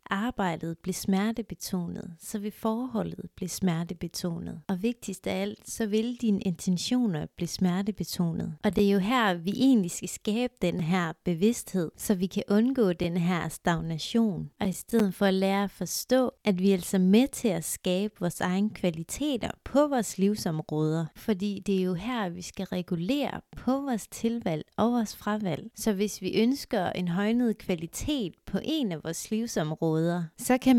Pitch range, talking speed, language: 180-225 Hz, 170 wpm, Danish